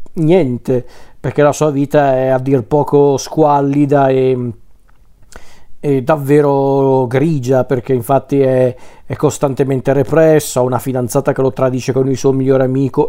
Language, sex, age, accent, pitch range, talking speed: Italian, male, 40-59, native, 130-160 Hz, 140 wpm